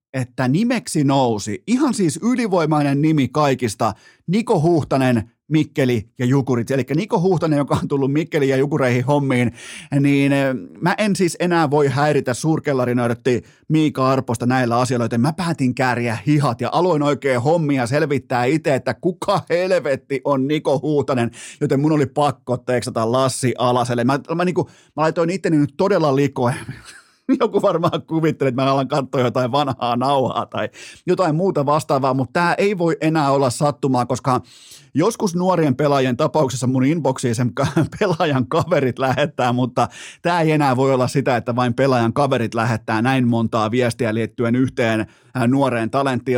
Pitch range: 125-155 Hz